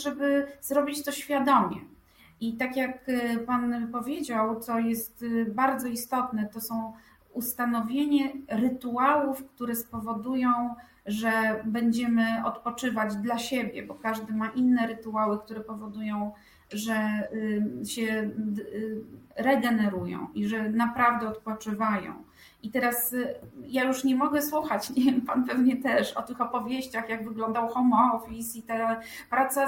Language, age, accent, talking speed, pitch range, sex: Polish, 30-49, native, 120 wpm, 230-260 Hz, female